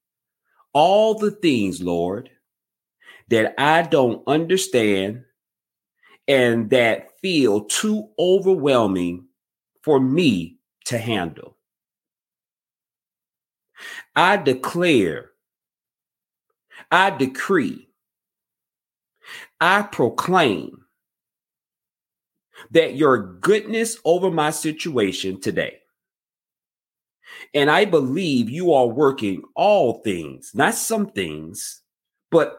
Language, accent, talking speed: English, American, 75 wpm